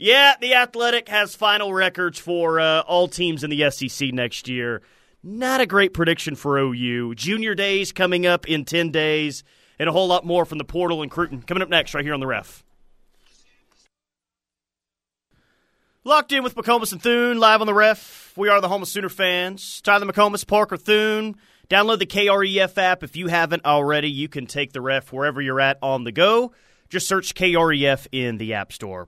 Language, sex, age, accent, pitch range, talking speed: English, male, 30-49, American, 135-195 Hz, 190 wpm